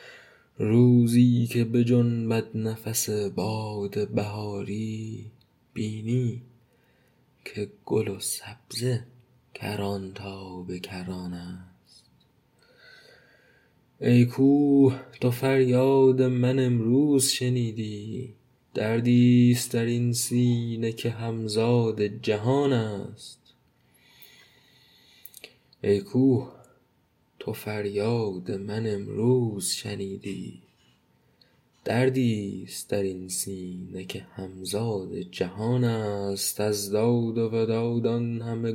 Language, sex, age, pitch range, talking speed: Persian, male, 20-39, 105-125 Hz, 80 wpm